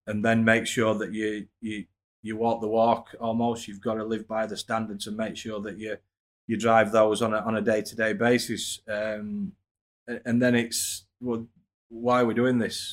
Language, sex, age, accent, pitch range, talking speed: English, male, 30-49, British, 100-120 Hz, 205 wpm